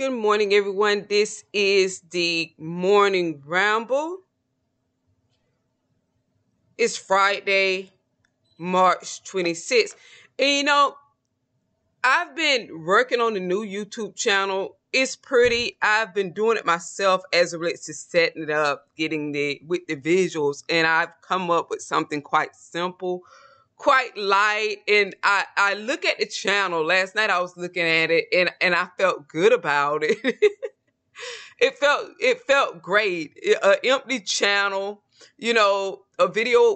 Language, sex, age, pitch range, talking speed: English, female, 20-39, 170-265 Hz, 140 wpm